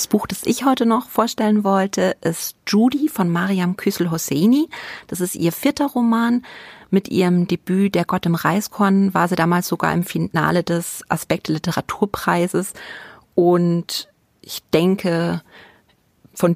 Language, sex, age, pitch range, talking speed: German, female, 30-49, 170-210 Hz, 140 wpm